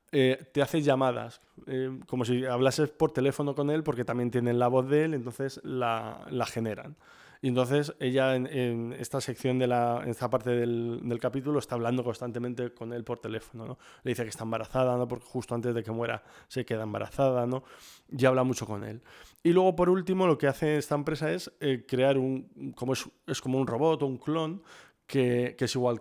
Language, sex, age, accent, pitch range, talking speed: Spanish, male, 20-39, Spanish, 120-145 Hz, 215 wpm